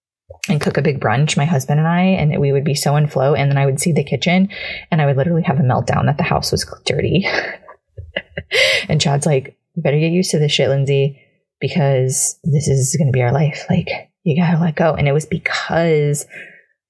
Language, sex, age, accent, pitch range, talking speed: English, female, 20-39, American, 135-160 Hz, 225 wpm